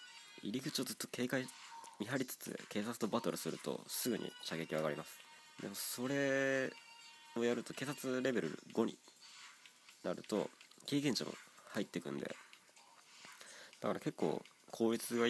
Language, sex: Japanese, male